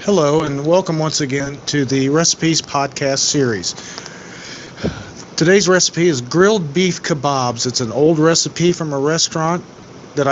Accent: American